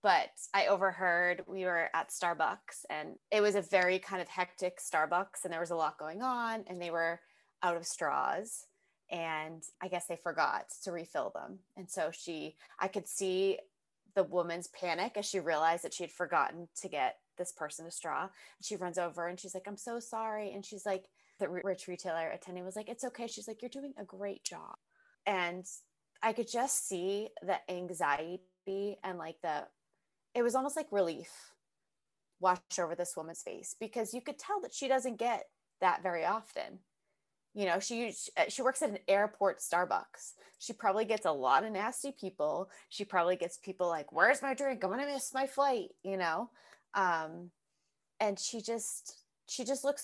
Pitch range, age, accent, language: 180-235 Hz, 20-39, American, English